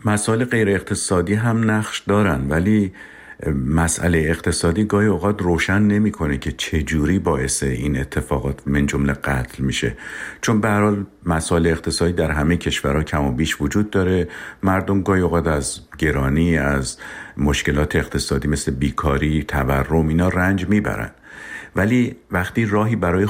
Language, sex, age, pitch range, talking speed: Persian, male, 50-69, 75-95 Hz, 135 wpm